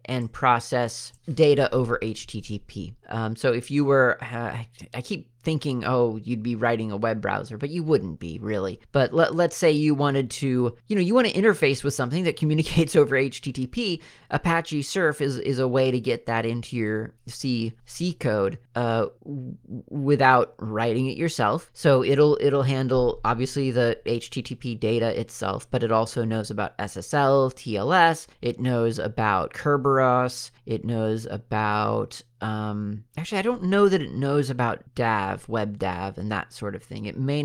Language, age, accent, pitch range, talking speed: English, 30-49, American, 105-135 Hz, 175 wpm